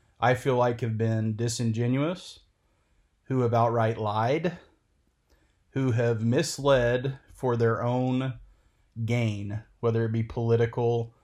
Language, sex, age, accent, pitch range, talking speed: English, male, 30-49, American, 110-125 Hz, 110 wpm